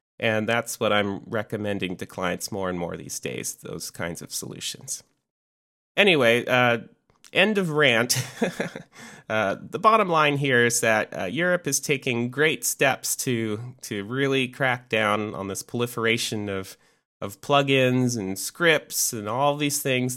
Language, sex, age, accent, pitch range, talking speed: English, male, 30-49, American, 105-140 Hz, 150 wpm